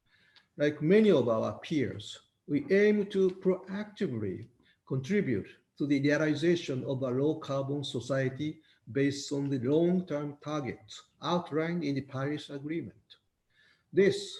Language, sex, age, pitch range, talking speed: English, male, 50-69, 140-175 Hz, 115 wpm